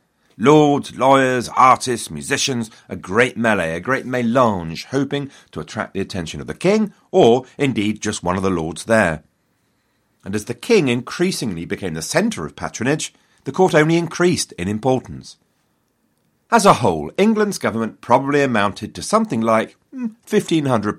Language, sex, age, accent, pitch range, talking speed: English, male, 40-59, British, 90-145 Hz, 150 wpm